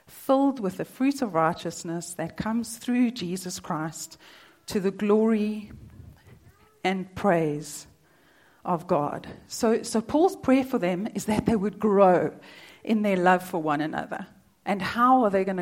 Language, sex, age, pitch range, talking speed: English, female, 40-59, 180-230 Hz, 155 wpm